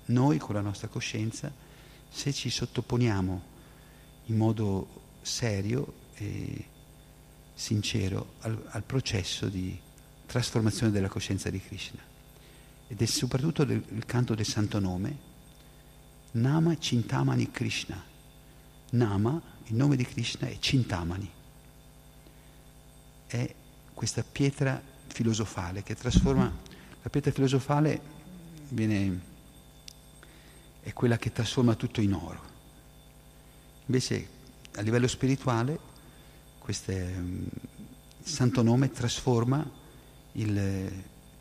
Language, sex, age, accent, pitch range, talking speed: Italian, male, 50-69, native, 105-135 Hz, 95 wpm